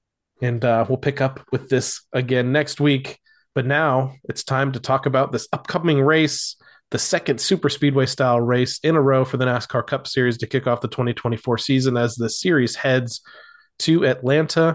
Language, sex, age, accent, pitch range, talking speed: English, male, 30-49, American, 125-140 Hz, 185 wpm